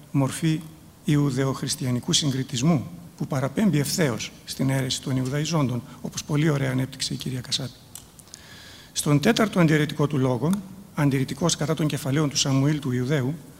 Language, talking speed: Greek, 130 wpm